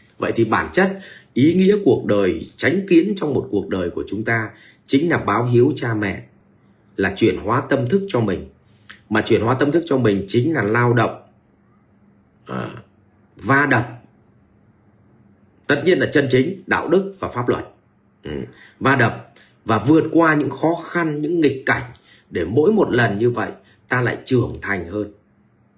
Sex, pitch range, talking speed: male, 105-135 Hz, 175 wpm